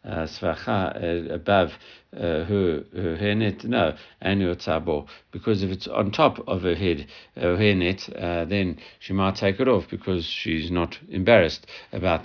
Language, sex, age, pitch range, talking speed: English, male, 60-79, 85-100 Hz, 145 wpm